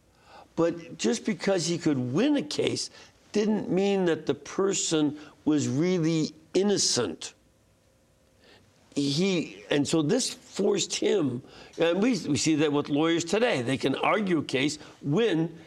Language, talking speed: English, 140 wpm